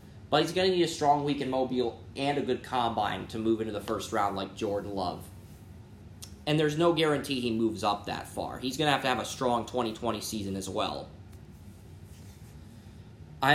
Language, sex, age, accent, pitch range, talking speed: English, male, 20-39, American, 105-140 Hz, 195 wpm